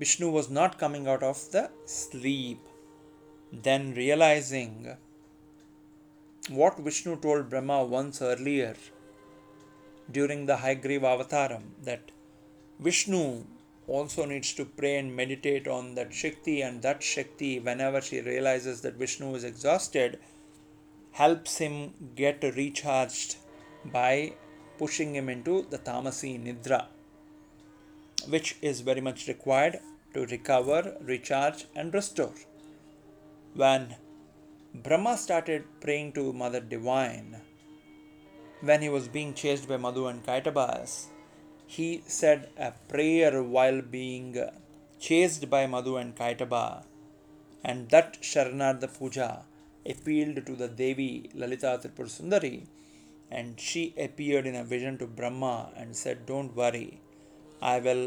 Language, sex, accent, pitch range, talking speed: English, male, Indian, 125-150 Hz, 120 wpm